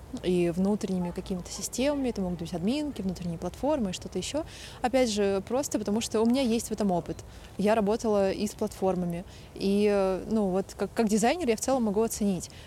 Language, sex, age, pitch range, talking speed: Russian, female, 20-39, 200-255 Hz, 185 wpm